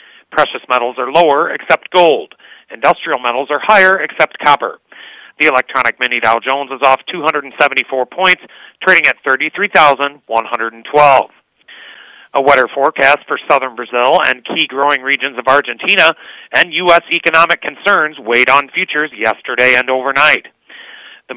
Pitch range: 125-165 Hz